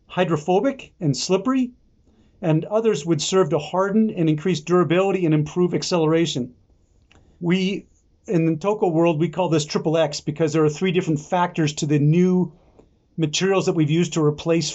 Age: 40-59